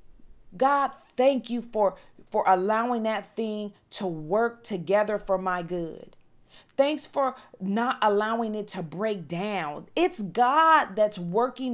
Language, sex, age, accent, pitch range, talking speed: English, female, 40-59, American, 200-270 Hz, 135 wpm